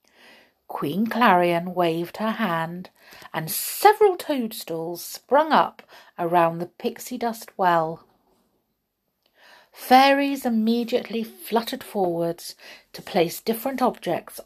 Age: 50-69